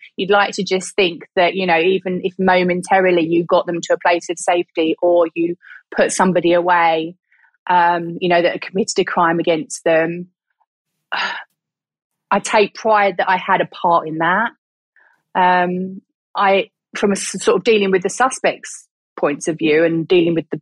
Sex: female